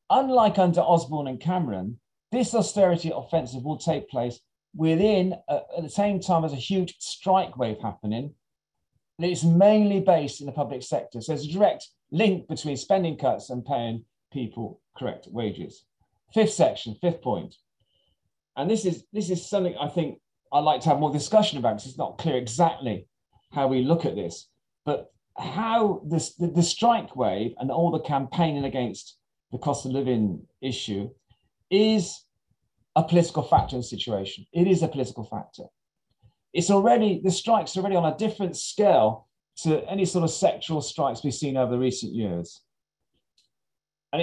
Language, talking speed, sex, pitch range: English, 170 wpm, male, 130-185 Hz